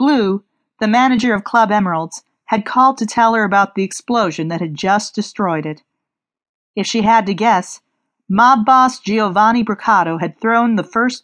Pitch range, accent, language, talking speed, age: 180-235 Hz, American, English, 170 wpm, 40-59